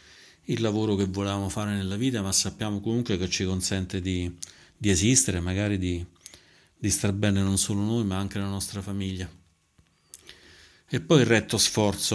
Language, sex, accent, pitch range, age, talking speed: Italian, male, native, 95-115 Hz, 40-59, 170 wpm